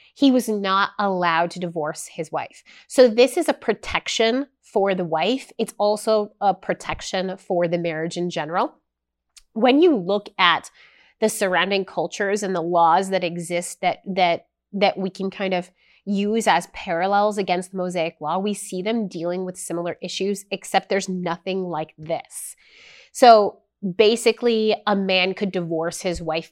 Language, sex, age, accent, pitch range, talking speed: English, female, 30-49, American, 175-220 Hz, 160 wpm